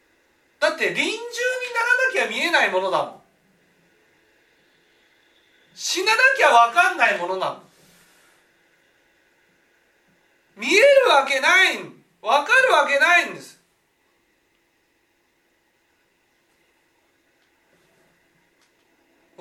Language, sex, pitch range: Japanese, male, 200-335 Hz